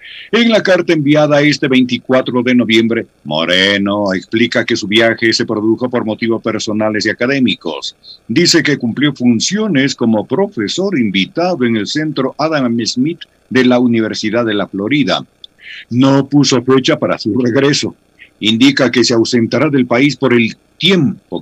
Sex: male